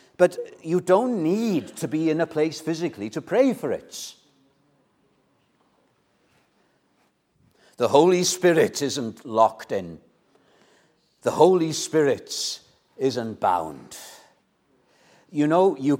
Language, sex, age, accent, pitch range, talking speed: English, male, 60-79, British, 140-200 Hz, 105 wpm